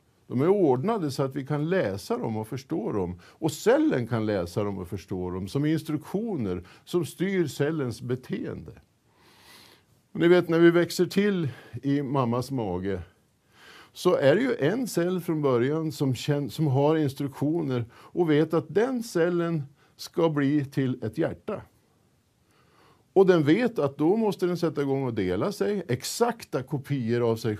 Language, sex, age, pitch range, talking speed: Swedish, male, 50-69, 105-160 Hz, 160 wpm